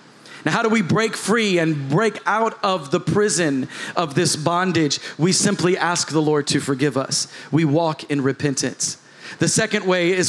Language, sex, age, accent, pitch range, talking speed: English, male, 40-59, American, 150-190 Hz, 180 wpm